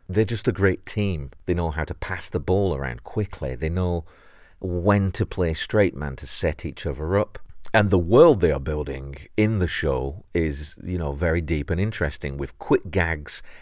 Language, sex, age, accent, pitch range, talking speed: English, male, 40-59, British, 70-90 Hz, 200 wpm